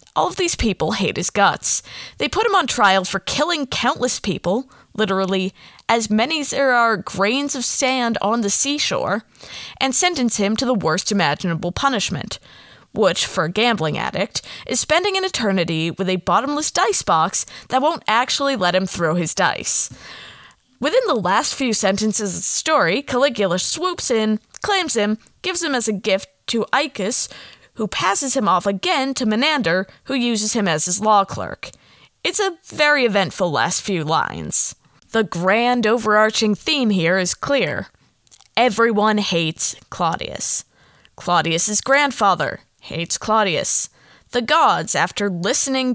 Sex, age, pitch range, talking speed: female, 20-39, 195-275 Hz, 155 wpm